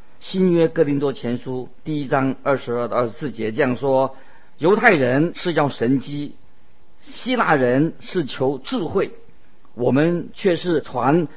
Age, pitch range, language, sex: 50-69, 120-165 Hz, Chinese, male